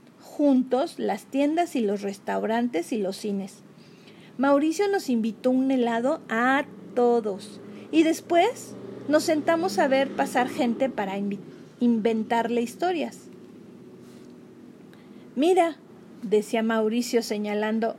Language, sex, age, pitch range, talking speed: Spanish, female, 40-59, 220-305 Hz, 105 wpm